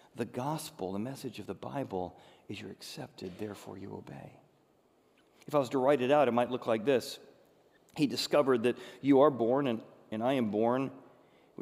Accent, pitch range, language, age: American, 115-140 Hz, English, 40-59